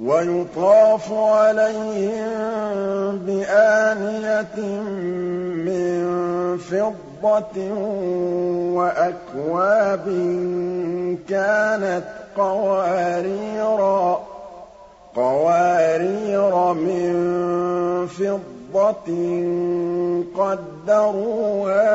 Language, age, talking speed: Arabic, 50-69, 35 wpm